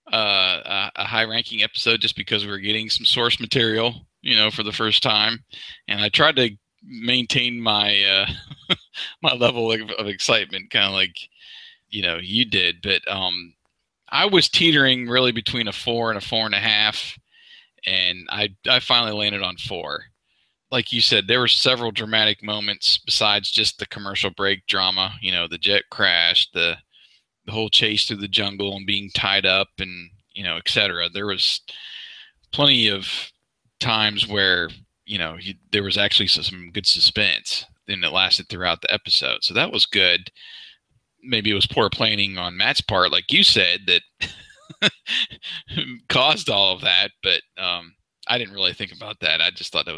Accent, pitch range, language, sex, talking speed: American, 95-115 Hz, English, male, 175 wpm